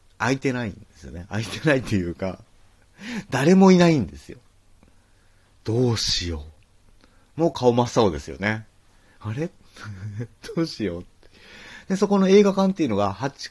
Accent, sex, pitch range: native, male, 95-135 Hz